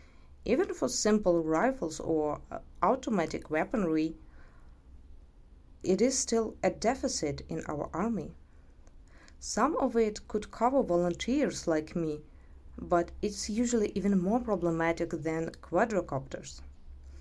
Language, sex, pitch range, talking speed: English, female, 150-230 Hz, 110 wpm